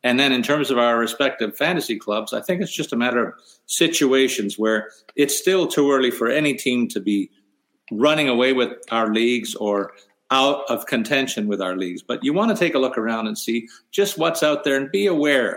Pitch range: 110-145 Hz